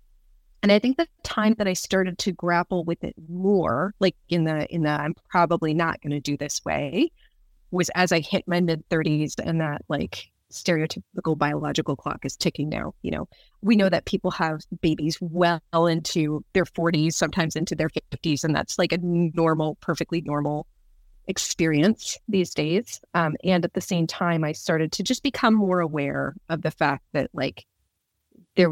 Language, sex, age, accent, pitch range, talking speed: English, female, 30-49, American, 160-190 Hz, 180 wpm